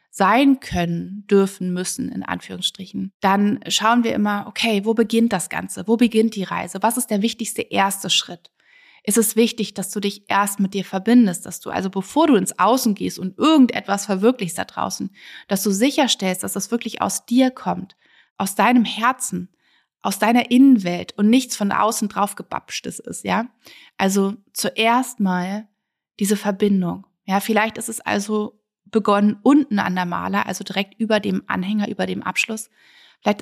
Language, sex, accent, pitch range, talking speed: German, female, German, 195-230 Hz, 170 wpm